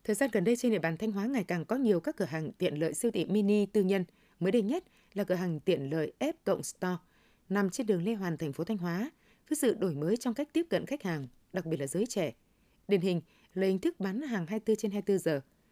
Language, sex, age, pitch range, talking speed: Vietnamese, female, 20-39, 175-230 Hz, 275 wpm